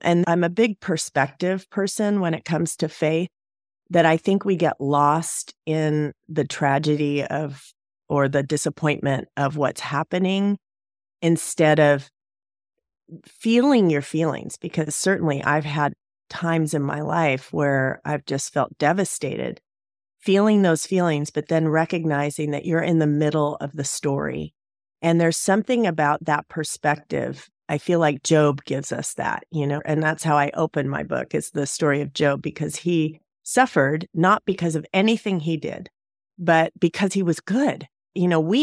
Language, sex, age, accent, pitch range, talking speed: English, female, 30-49, American, 145-175 Hz, 160 wpm